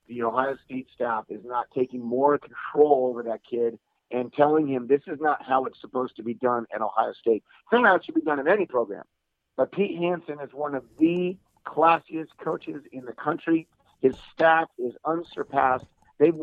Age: 50-69